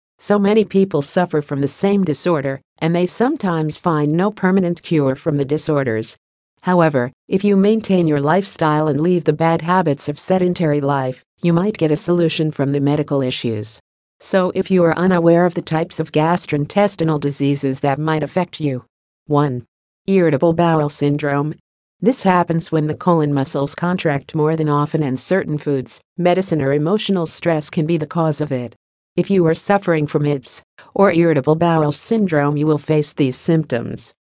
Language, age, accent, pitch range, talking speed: English, 50-69, American, 145-180 Hz, 170 wpm